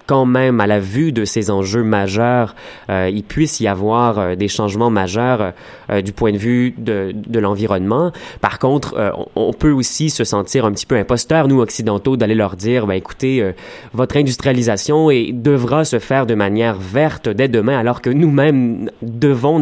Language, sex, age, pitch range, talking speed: French, male, 20-39, 105-135 Hz, 185 wpm